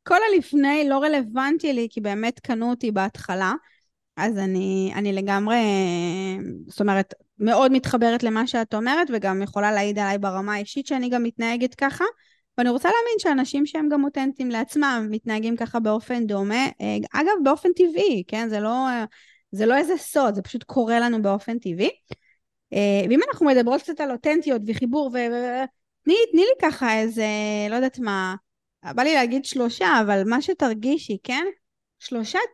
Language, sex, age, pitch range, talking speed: Hebrew, female, 20-39, 210-295 Hz, 155 wpm